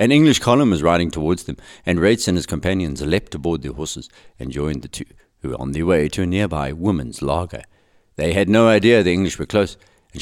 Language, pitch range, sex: English, 85-115 Hz, male